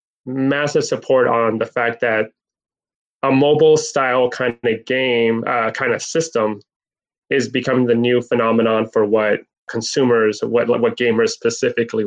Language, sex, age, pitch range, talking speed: English, male, 20-39, 110-145 Hz, 140 wpm